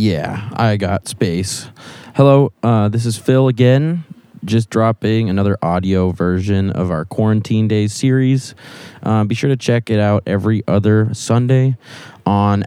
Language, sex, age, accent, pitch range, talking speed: English, male, 20-39, American, 100-125 Hz, 145 wpm